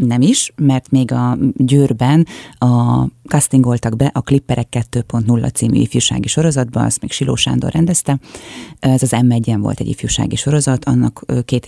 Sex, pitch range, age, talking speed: female, 130-190 Hz, 30-49, 150 wpm